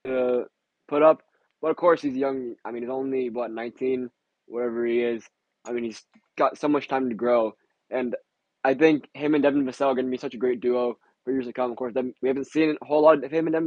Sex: male